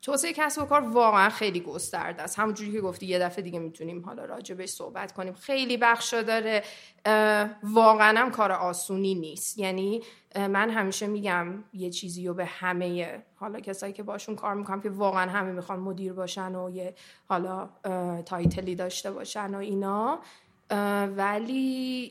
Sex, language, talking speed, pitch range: female, Persian, 155 wpm, 185-235 Hz